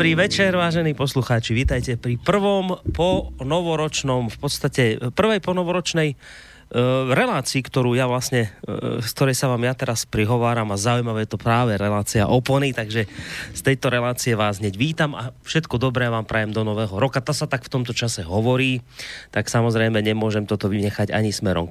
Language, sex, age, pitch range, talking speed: Slovak, male, 30-49, 110-145 Hz, 170 wpm